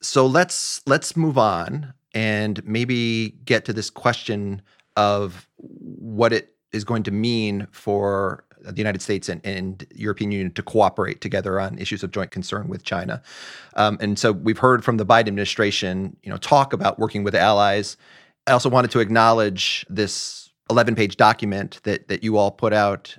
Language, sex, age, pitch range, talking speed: English, male, 30-49, 100-125 Hz, 170 wpm